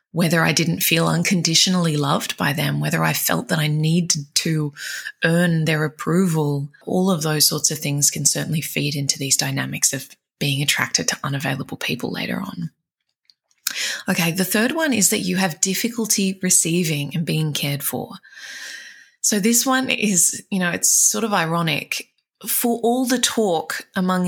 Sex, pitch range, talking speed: female, 155-190 Hz, 165 wpm